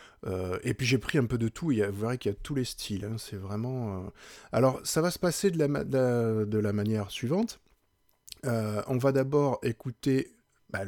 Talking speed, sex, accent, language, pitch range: 230 wpm, male, French, French, 105-140 Hz